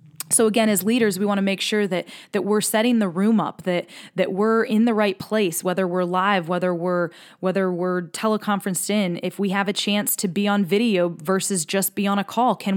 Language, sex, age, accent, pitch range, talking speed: English, female, 20-39, American, 185-230 Hz, 225 wpm